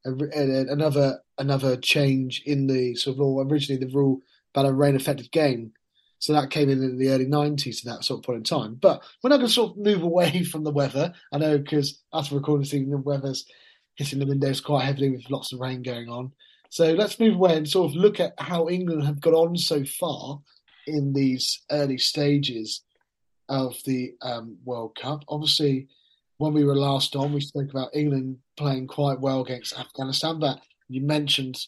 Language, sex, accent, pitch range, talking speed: English, male, British, 135-155 Hz, 200 wpm